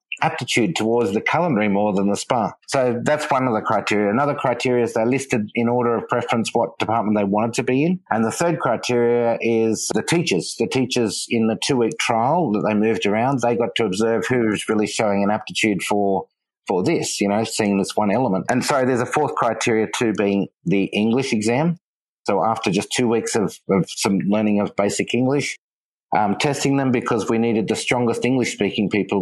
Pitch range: 105-130 Hz